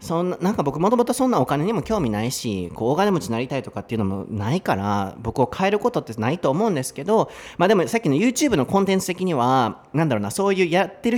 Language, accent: Japanese, native